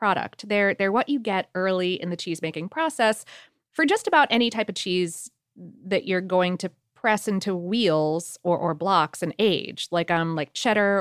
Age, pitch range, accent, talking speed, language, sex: 30-49, 175-230 Hz, American, 185 wpm, English, female